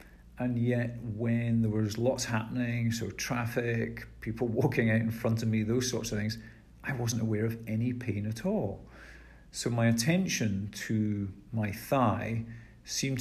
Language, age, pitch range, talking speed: English, 50-69, 105-125 Hz, 160 wpm